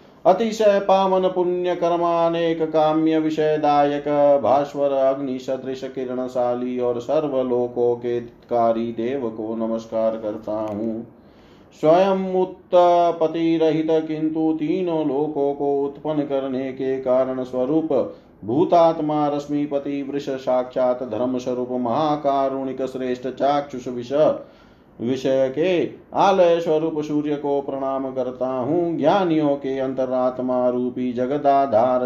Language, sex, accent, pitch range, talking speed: Hindi, male, native, 125-145 Hz, 75 wpm